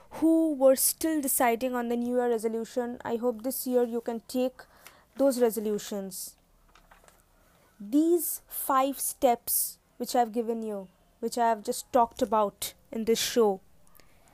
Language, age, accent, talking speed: English, 20-39, Indian, 145 wpm